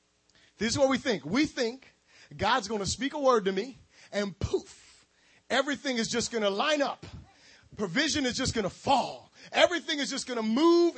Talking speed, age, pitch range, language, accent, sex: 195 wpm, 30-49, 230-290 Hz, English, American, male